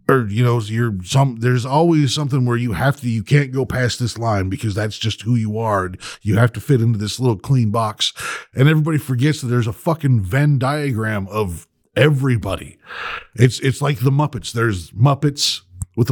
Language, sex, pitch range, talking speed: English, male, 115-140 Hz, 195 wpm